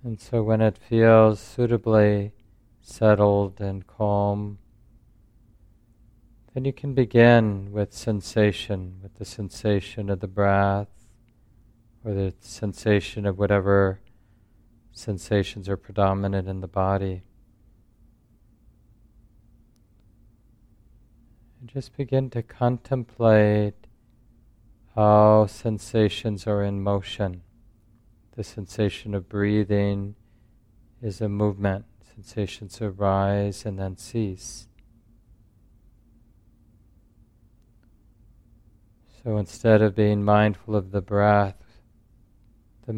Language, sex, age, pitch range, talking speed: English, male, 40-59, 100-115 Hz, 90 wpm